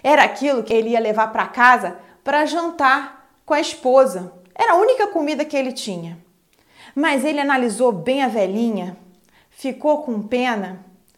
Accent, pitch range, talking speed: Brazilian, 205-275 Hz, 155 wpm